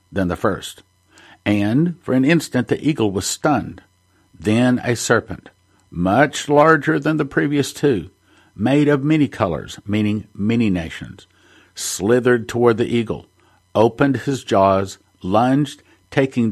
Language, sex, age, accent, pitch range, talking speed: English, male, 50-69, American, 95-140 Hz, 130 wpm